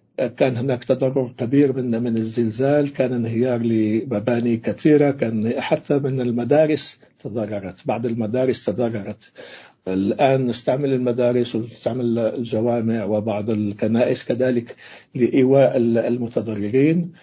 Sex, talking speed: male, 100 wpm